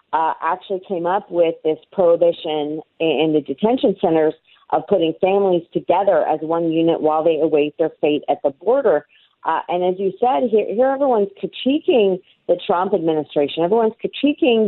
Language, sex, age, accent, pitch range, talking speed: English, female, 40-59, American, 165-210 Hz, 165 wpm